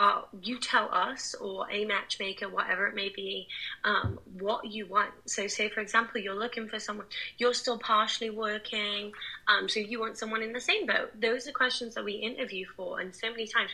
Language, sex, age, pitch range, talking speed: English, female, 20-39, 195-230 Hz, 205 wpm